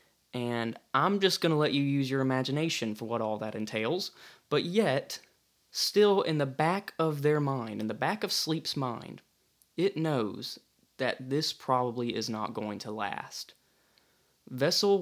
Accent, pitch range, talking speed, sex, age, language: American, 115-155 Hz, 165 wpm, male, 20-39, English